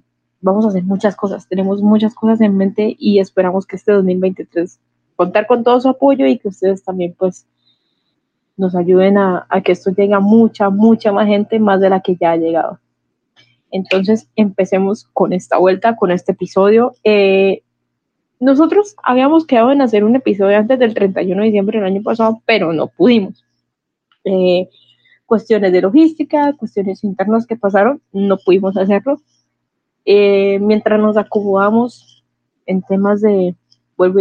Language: Spanish